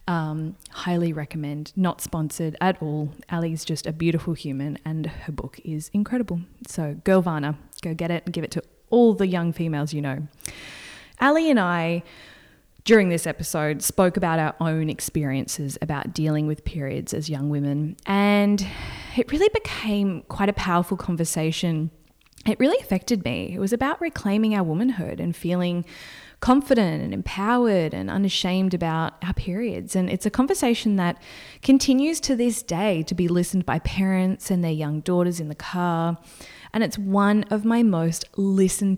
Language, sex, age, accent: English, female, 20-39, Australian